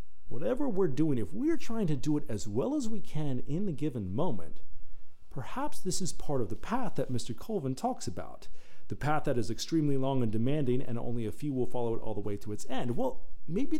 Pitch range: 100-150 Hz